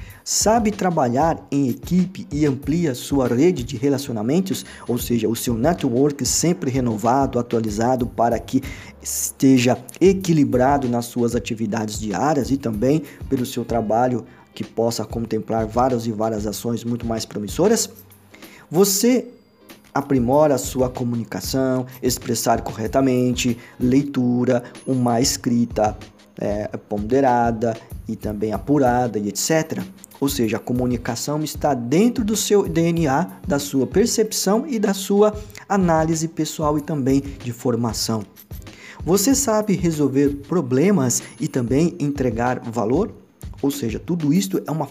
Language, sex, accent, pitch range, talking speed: Portuguese, male, Brazilian, 115-160 Hz, 125 wpm